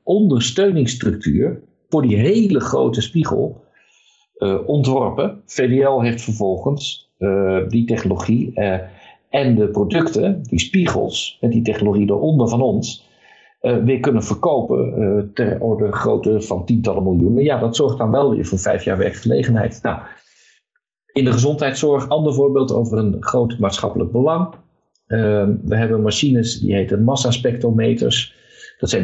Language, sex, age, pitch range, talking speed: Dutch, male, 50-69, 105-135 Hz, 140 wpm